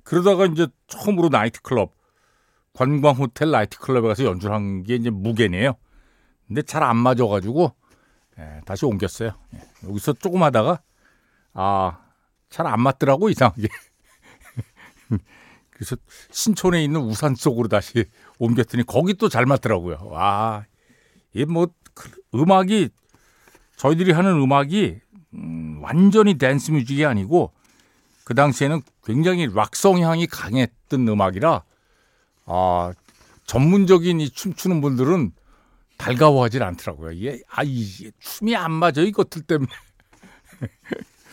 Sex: male